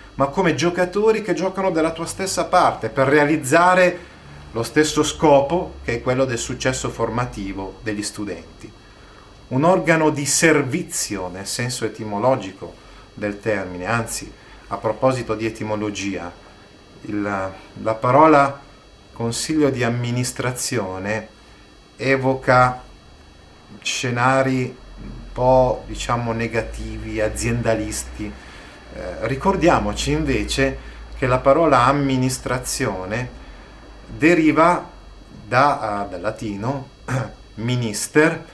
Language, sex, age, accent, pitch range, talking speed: Italian, male, 30-49, native, 105-150 Hz, 90 wpm